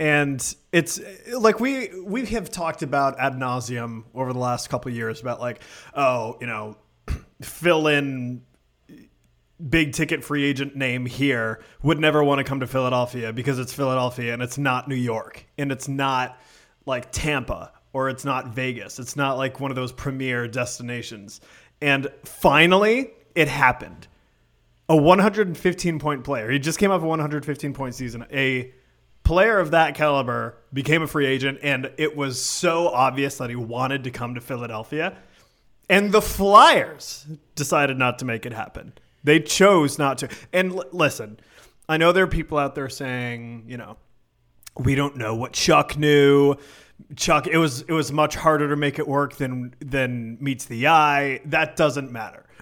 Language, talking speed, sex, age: English, 170 wpm, male, 30-49